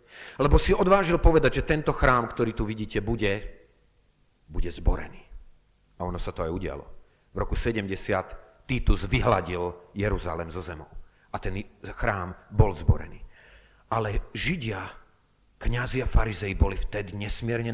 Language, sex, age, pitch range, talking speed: Slovak, male, 40-59, 95-125 Hz, 135 wpm